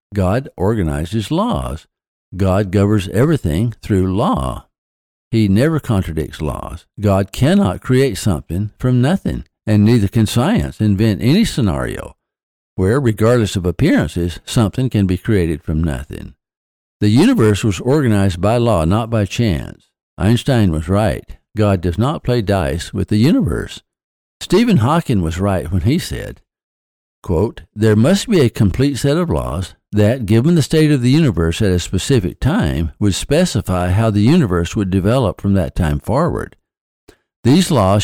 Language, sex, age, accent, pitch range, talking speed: English, male, 60-79, American, 90-115 Hz, 150 wpm